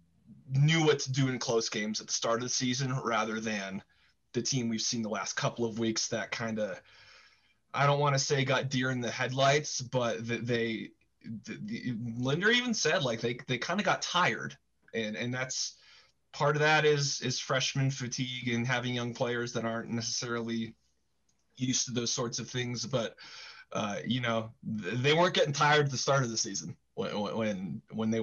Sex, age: male, 20-39